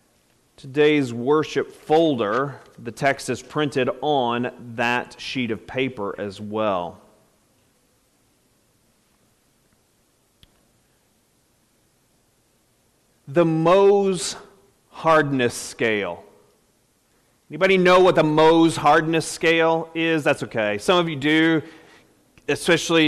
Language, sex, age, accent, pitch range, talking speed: English, male, 40-59, American, 130-185 Hz, 85 wpm